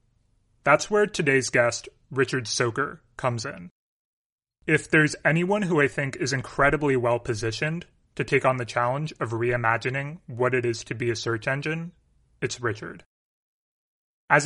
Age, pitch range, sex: 30-49, 125-150 Hz, male